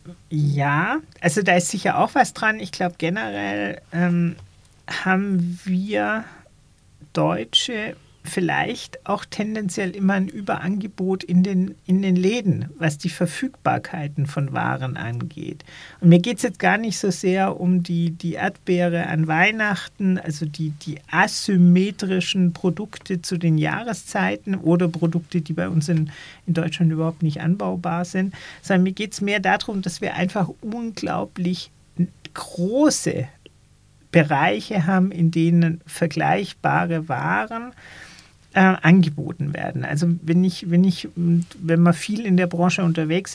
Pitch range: 165-190 Hz